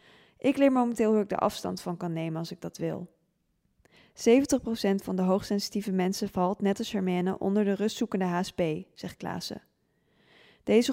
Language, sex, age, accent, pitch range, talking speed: Dutch, female, 20-39, Dutch, 190-230 Hz, 165 wpm